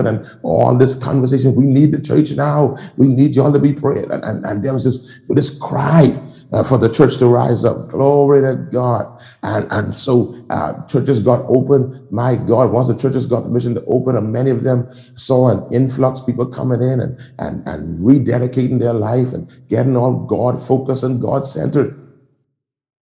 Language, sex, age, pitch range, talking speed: English, male, 50-69, 105-135 Hz, 190 wpm